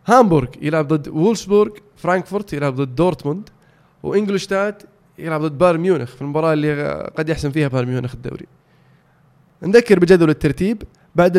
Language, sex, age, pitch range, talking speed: Arabic, male, 20-39, 145-180 Hz, 135 wpm